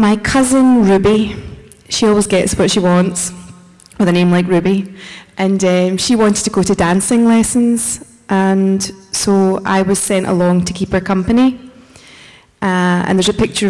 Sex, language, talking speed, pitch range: female, English, 165 wpm, 180-205 Hz